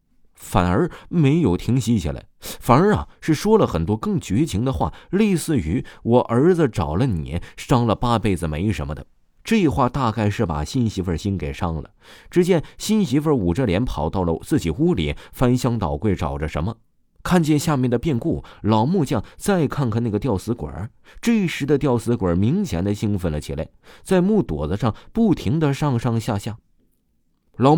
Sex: male